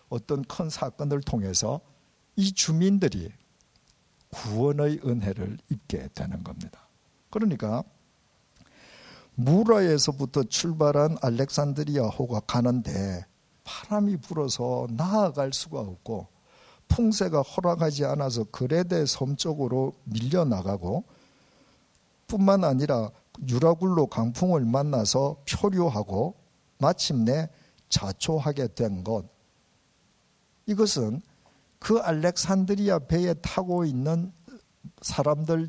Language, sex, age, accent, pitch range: Korean, male, 50-69, native, 125-190 Hz